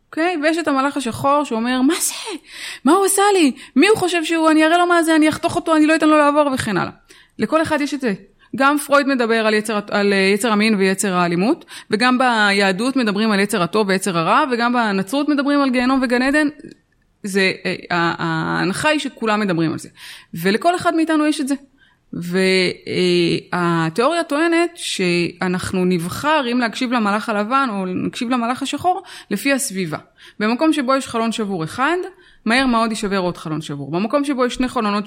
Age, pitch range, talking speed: 20-39, 200-300 Hz, 180 wpm